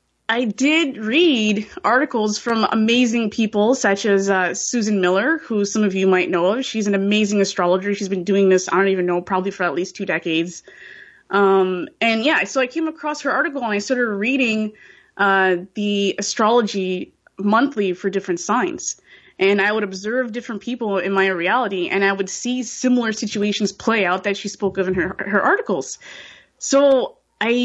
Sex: female